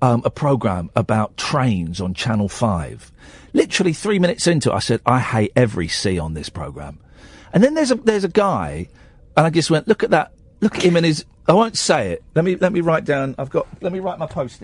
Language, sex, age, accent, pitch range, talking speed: English, male, 40-59, British, 110-180 Hz, 240 wpm